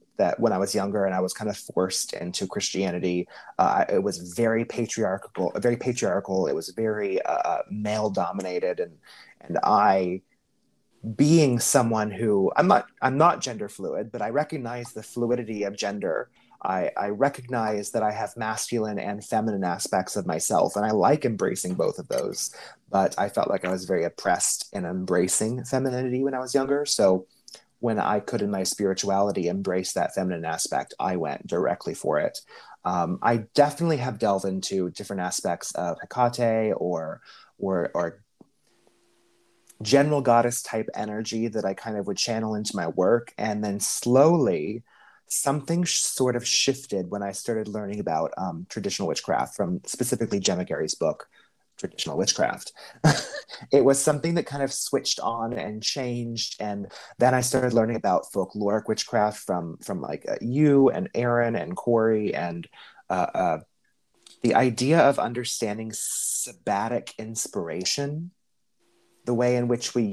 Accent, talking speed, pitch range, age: American, 160 wpm, 100-125 Hz, 30-49